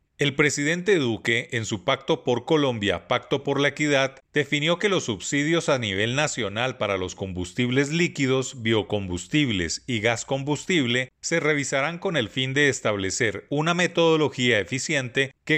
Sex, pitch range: male, 115-155 Hz